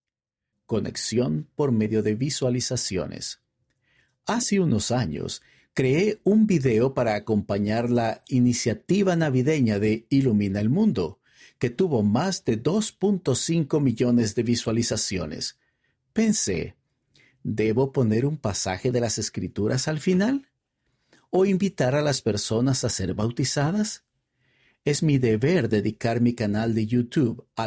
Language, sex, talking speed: Spanish, male, 120 wpm